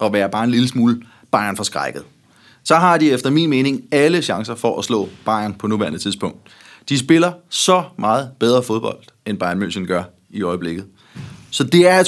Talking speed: 200 wpm